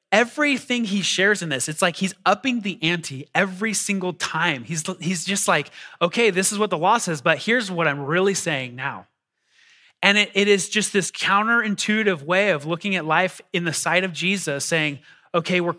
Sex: male